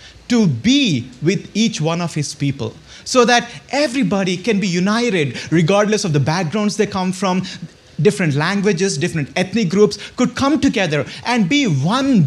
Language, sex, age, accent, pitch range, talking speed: English, male, 30-49, Indian, 160-235 Hz, 155 wpm